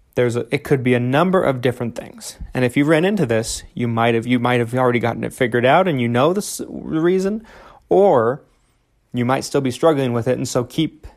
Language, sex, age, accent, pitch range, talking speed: English, male, 30-49, American, 115-140 Hz, 230 wpm